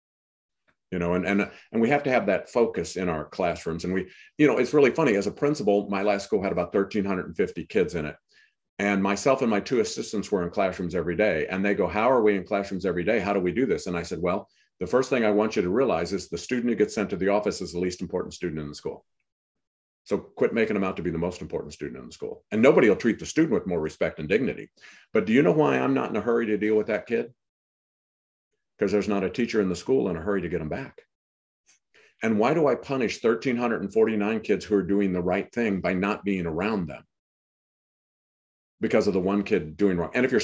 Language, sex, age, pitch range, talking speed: English, male, 50-69, 90-105 Hz, 255 wpm